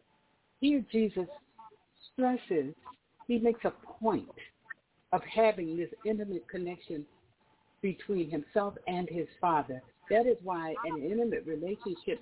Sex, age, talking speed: female, 60-79, 115 wpm